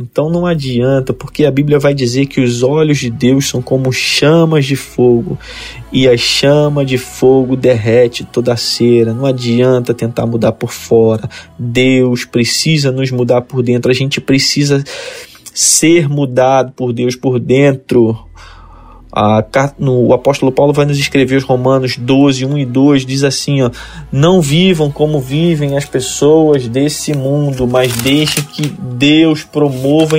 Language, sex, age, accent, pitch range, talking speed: Portuguese, male, 20-39, Brazilian, 125-150 Hz, 155 wpm